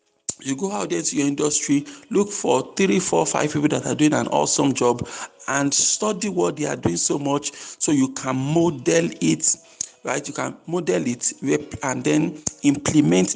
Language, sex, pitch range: English, male, 135-180 Hz